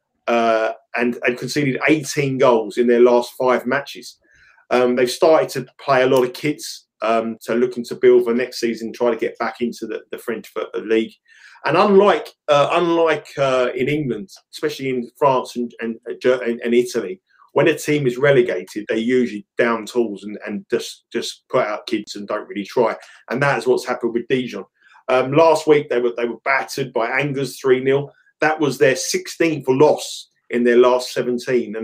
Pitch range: 120-150 Hz